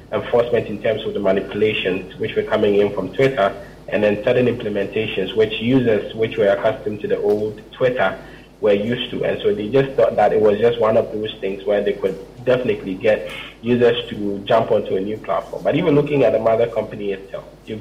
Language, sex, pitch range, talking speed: English, male, 110-135 Hz, 210 wpm